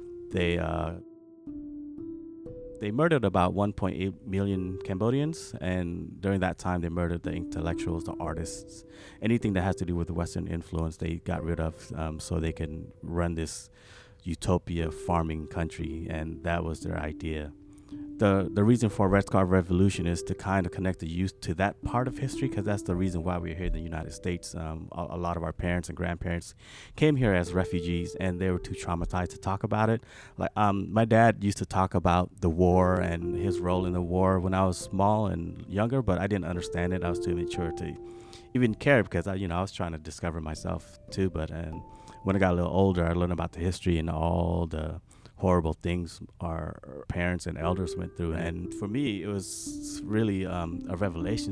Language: English